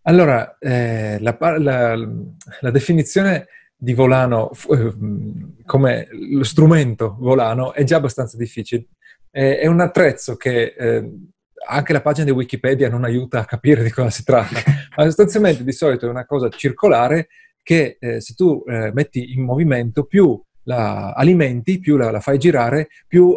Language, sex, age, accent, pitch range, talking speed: Italian, male, 30-49, native, 120-150 Hz, 155 wpm